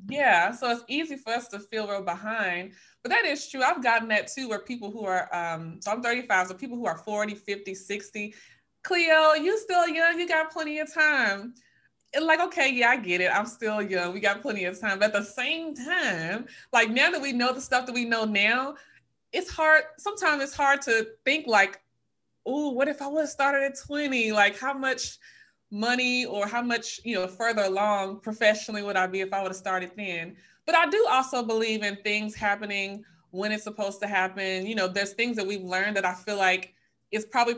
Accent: American